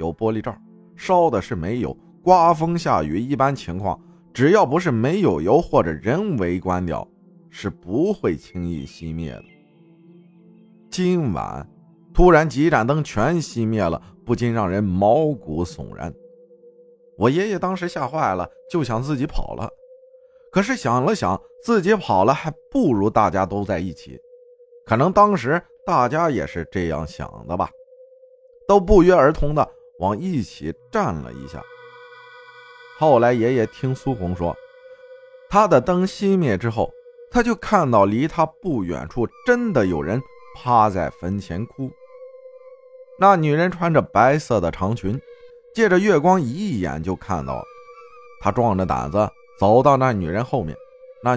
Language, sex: Chinese, male